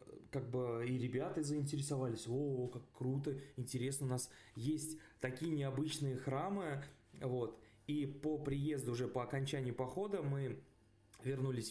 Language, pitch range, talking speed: Russian, 115-145 Hz, 130 wpm